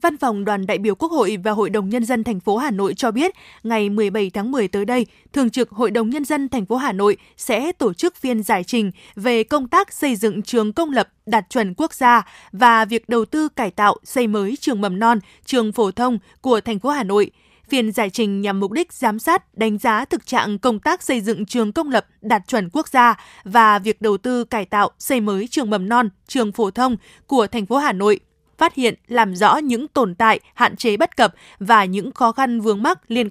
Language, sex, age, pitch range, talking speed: Vietnamese, female, 20-39, 215-260 Hz, 235 wpm